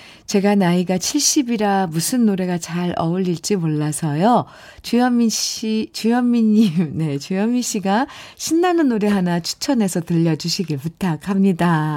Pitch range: 160-220 Hz